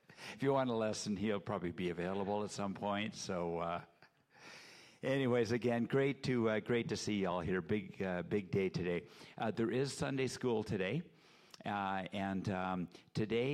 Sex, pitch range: male, 90-115 Hz